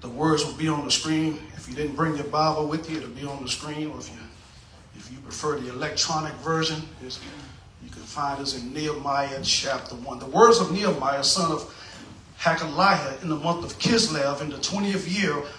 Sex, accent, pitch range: male, American, 130-195 Hz